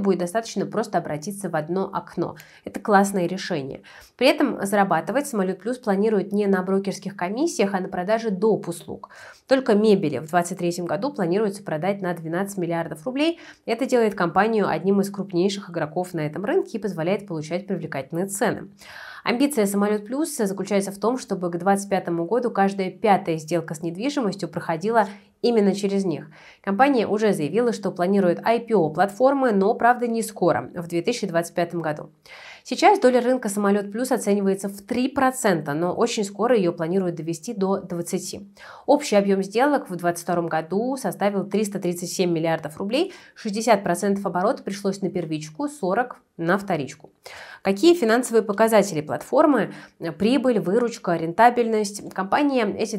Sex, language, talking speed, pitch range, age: female, Russian, 145 wpm, 175-225 Hz, 20-39